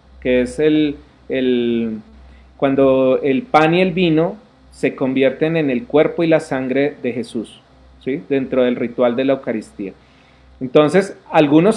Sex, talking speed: male, 150 wpm